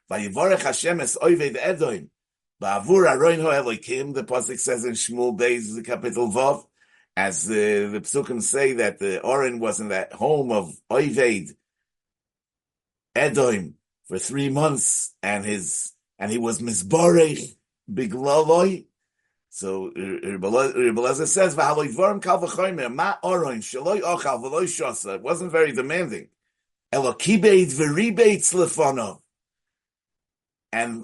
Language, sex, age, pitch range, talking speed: English, male, 60-79, 135-185 Hz, 120 wpm